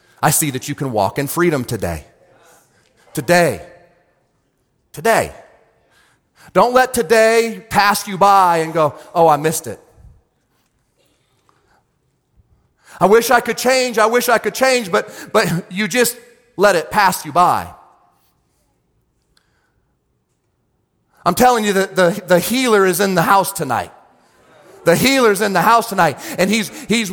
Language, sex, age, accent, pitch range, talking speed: English, male, 40-59, American, 175-230 Hz, 140 wpm